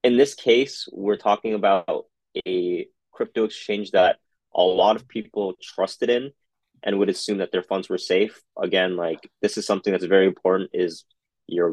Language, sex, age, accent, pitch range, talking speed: English, male, 20-39, American, 90-130 Hz, 175 wpm